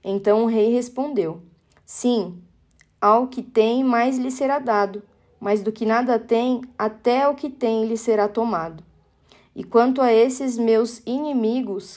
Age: 20-39